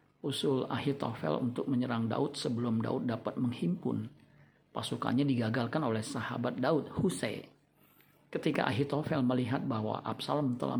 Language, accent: Indonesian, native